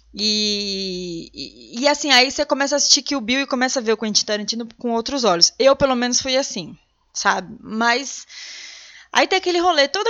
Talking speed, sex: 200 wpm, female